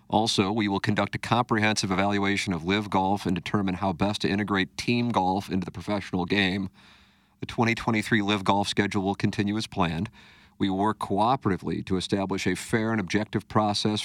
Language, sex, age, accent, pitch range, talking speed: English, male, 50-69, American, 95-110 Hz, 175 wpm